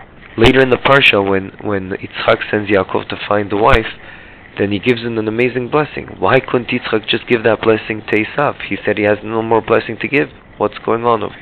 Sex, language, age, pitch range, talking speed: male, English, 30-49, 95-120 Hz, 220 wpm